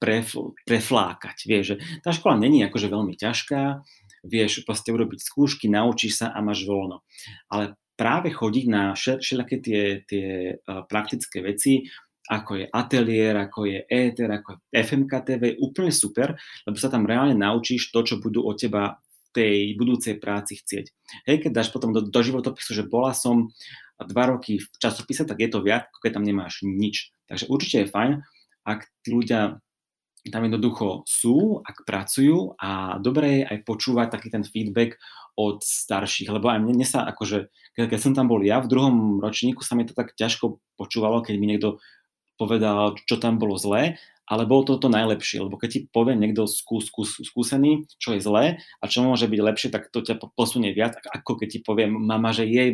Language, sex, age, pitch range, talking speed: Slovak, male, 30-49, 105-125 Hz, 180 wpm